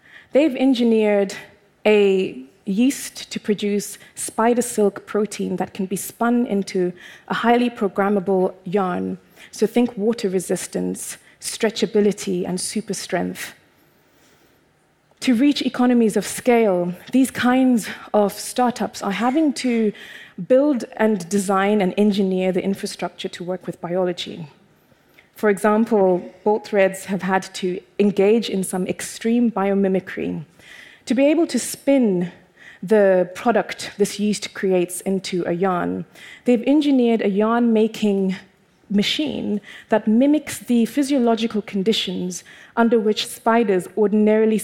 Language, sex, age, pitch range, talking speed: English, female, 20-39, 190-235 Hz, 120 wpm